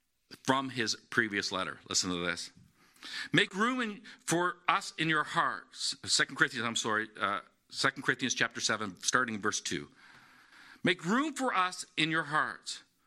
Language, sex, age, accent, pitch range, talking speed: English, male, 50-69, American, 175-245 Hz, 155 wpm